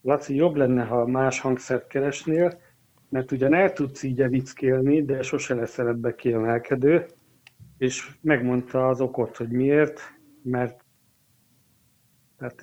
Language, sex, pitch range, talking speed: Hungarian, male, 120-140 Hz, 120 wpm